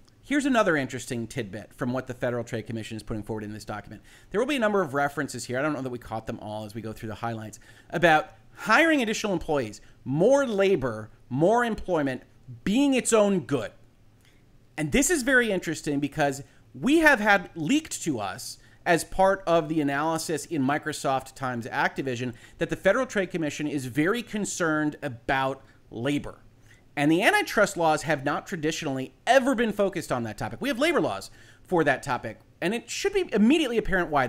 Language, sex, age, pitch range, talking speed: English, male, 30-49, 125-190 Hz, 190 wpm